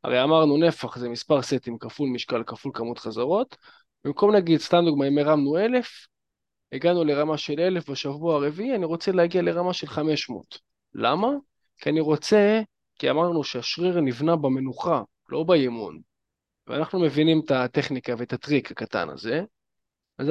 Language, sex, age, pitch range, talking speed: Hebrew, male, 20-39, 145-195 Hz, 150 wpm